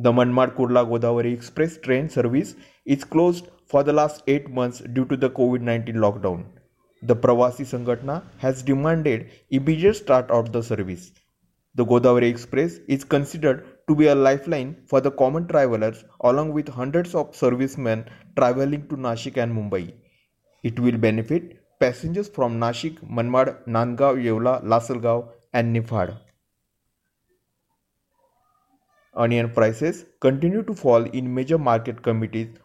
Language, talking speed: Marathi, 130 wpm